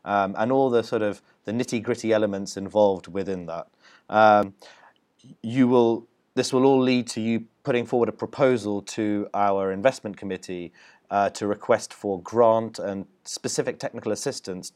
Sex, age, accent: male, 30-49, British